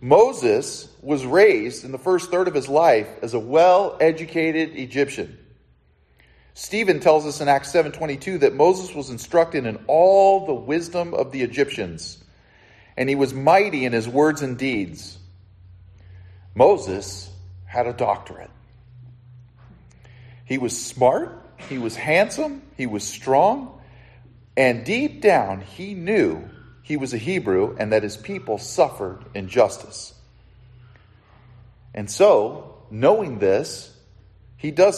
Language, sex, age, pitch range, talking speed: English, male, 40-59, 105-155 Hz, 125 wpm